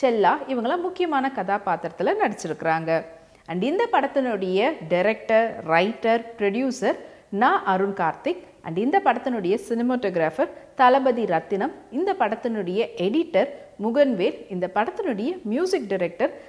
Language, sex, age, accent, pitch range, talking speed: Tamil, female, 40-59, native, 185-275 Hz, 100 wpm